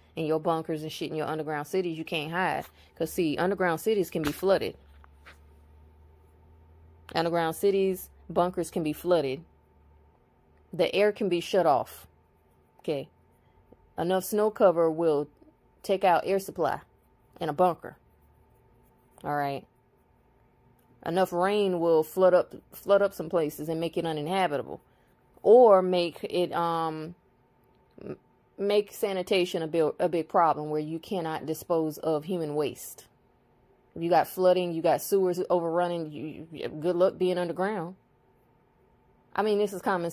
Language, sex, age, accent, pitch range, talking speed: English, female, 20-39, American, 145-185 Hz, 140 wpm